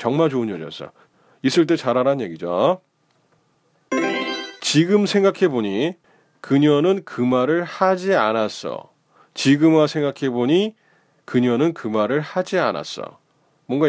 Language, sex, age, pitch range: Korean, male, 30-49, 130-185 Hz